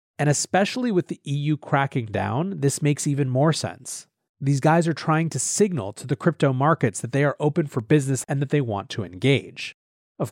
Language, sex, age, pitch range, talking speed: English, male, 30-49, 115-145 Hz, 205 wpm